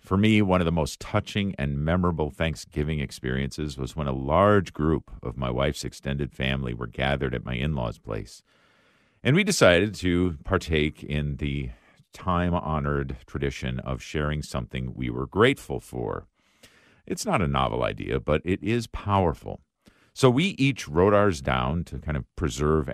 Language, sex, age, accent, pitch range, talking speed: English, male, 50-69, American, 70-95 Hz, 160 wpm